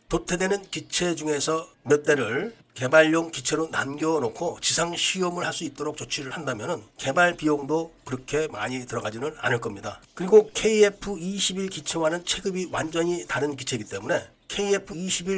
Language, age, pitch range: Korean, 40-59, 145-190 Hz